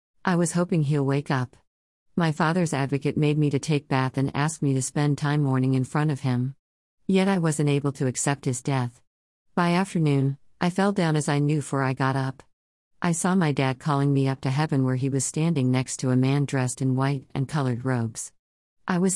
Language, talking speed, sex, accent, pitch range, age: English, 220 wpm, female, American, 130-155 Hz, 50-69